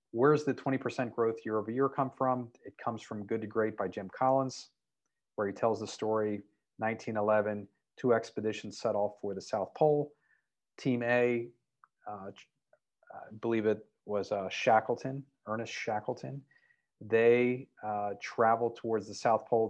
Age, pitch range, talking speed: 40-59, 105-125 Hz, 150 wpm